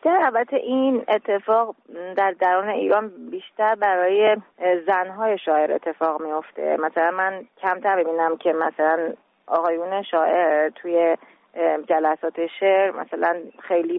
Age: 30-49